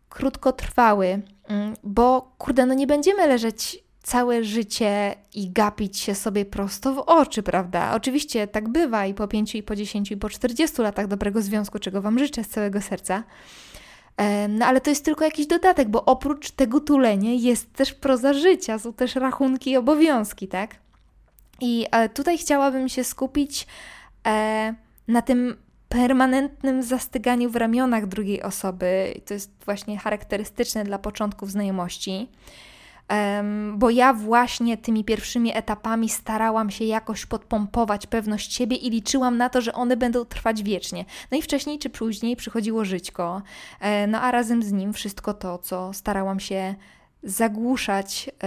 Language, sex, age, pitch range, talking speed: Polish, female, 20-39, 205-255 Hz, 145 wpm